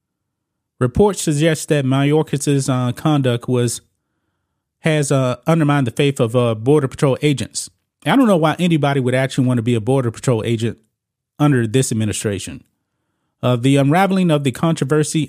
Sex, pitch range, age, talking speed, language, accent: male, 115-150 Hz, 30-49, 160 wpm, English, American